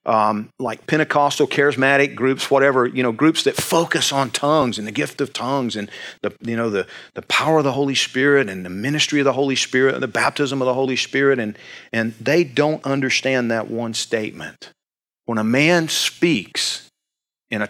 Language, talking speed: English, 195 wpm